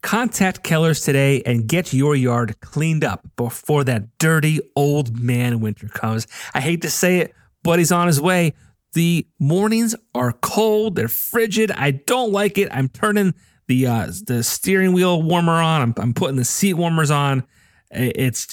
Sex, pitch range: male, 120-160 Hz